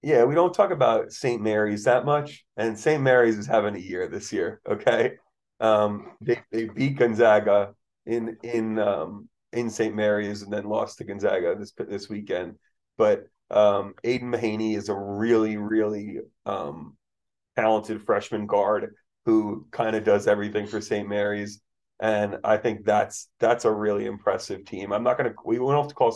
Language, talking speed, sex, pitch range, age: English, 170 wpm, male, 105-120 Hz, 30-49